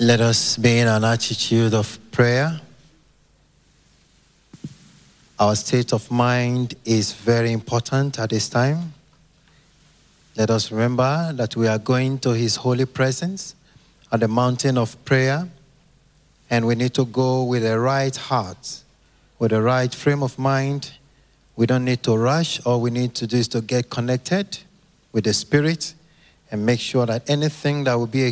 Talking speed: 160 wpm